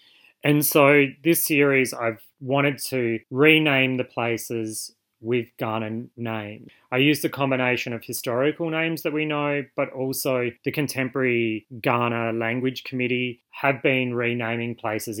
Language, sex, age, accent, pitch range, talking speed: English, male, 20-39, Australian, 110-130 Hz, 135 wpm